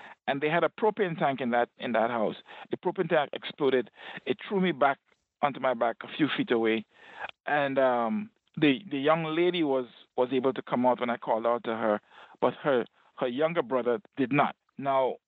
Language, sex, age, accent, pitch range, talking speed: English, male, 50-69, Nigerian, 130-185 Hz, 205 wpm